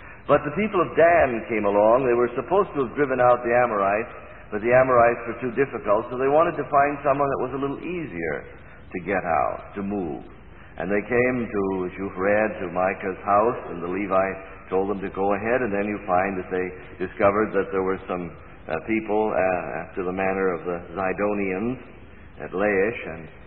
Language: English